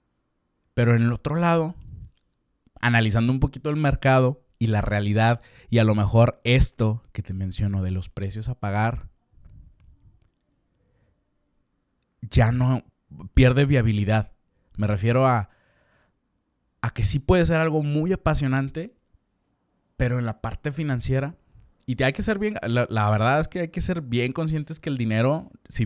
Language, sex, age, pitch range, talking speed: Spanish, male, 30-49, 100-130 Hz, 155 wpm